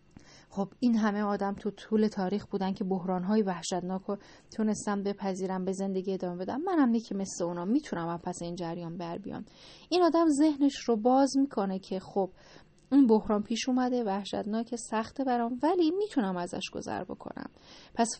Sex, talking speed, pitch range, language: female, 165 wpm, 185-235 Hz, Persian